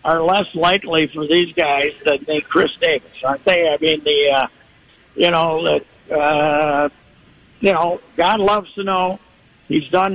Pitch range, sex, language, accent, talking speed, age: 145-190 Hz, male, English, American, 160 wpm, 60-79